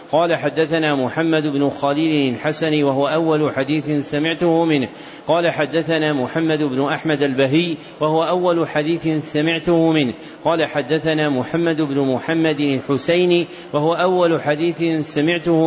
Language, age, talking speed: Arabic, 40-59, 125 wpm